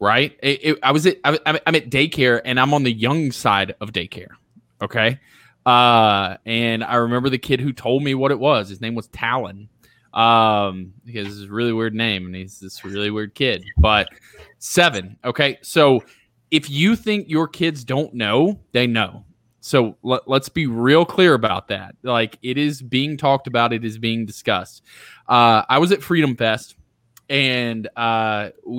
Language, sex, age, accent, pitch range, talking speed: English, male, 20-39, American, 105-130 Hz, 175 wpm